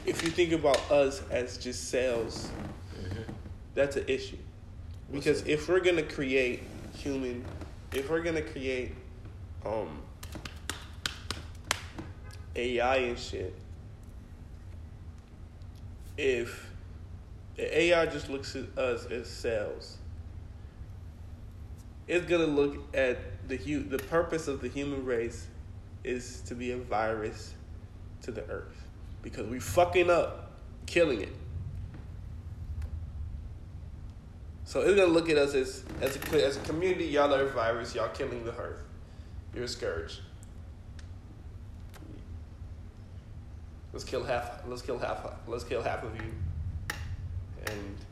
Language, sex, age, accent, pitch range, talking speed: English, male, 20-39, American, 85-125 Hz, 120 wpm